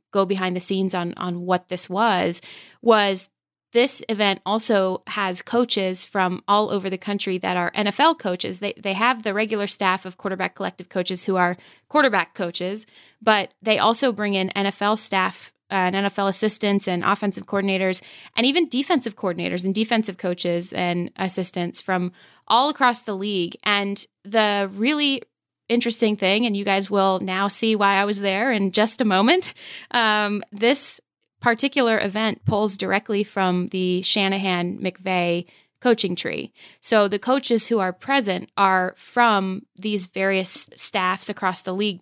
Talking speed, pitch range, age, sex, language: 155 wpm, 185-215 Hz, 20-39, female, English